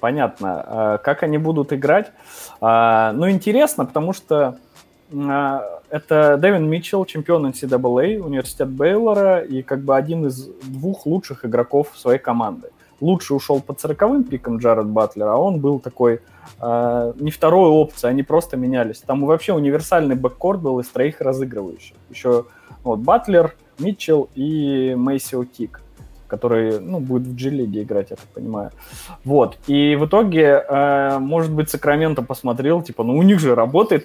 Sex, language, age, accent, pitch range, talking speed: male, Russian, 20-39, native, 125-160 Hz, 145 wpm